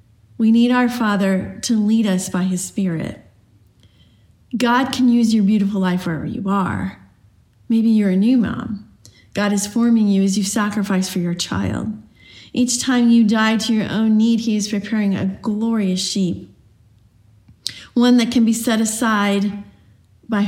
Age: 40-59